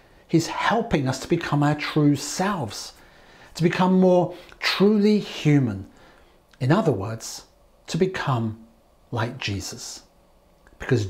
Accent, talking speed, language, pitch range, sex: British, 115 wpm, English, 130-175 Hz, male